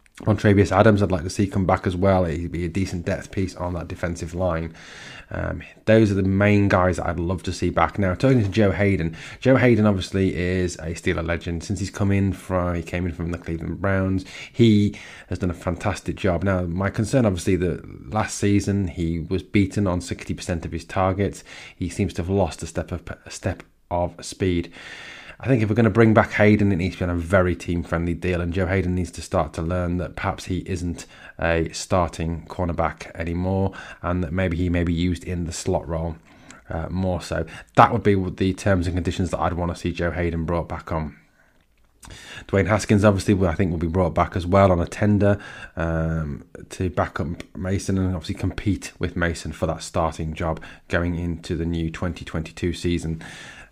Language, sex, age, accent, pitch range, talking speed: English, male, 20-39, British, 85-100 Hz, 210 wpm